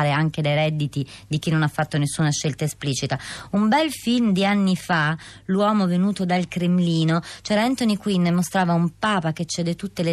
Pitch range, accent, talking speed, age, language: 160-195 Hz, native, 185 wpm, 30-49, Italian